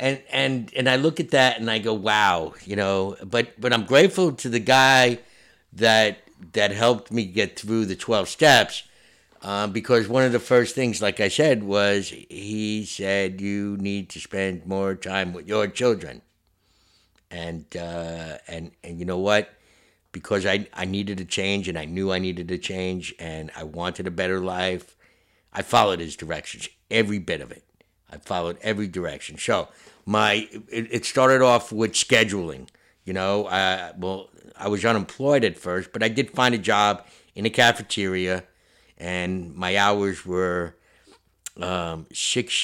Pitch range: 90-115 Hz